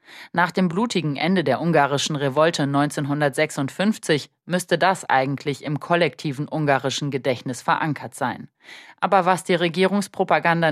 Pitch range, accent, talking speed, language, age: 135-170 Hz, German, 120 wpm, German, 30-49